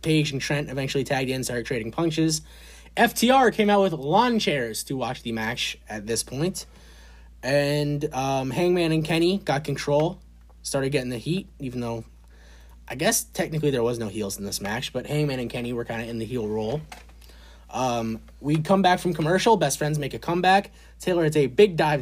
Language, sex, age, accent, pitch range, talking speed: English, male, 20-39, American, 130-175 Hz, 200 wpm